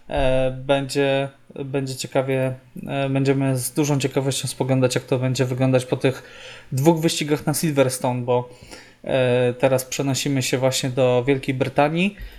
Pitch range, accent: 130-145 Hz, native